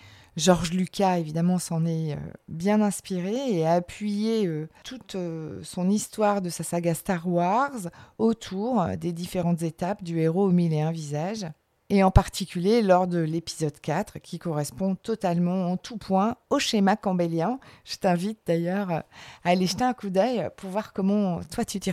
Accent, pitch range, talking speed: French, 175-220 Hz, 165 wpm